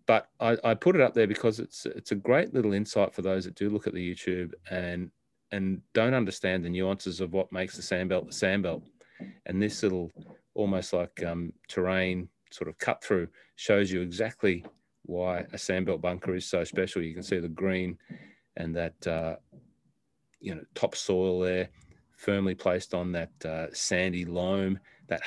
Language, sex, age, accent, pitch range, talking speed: English, male, 30-49, Australian, 90-95 Hz, 180 wpm